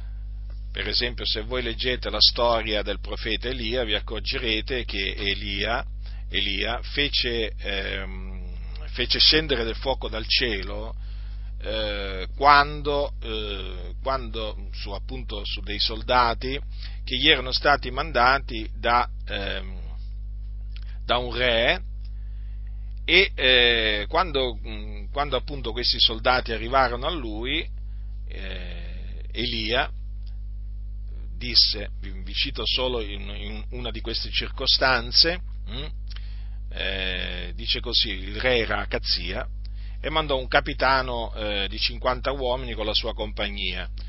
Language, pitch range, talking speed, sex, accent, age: Italian, 100-125 Hz, 110 wpm, male, native, 40-59